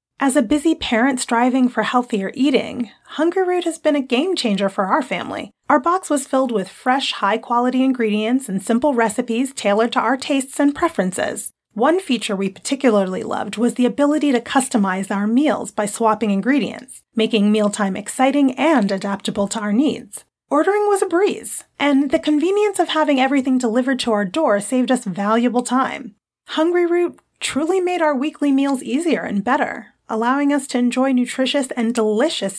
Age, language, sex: 30-49, English, female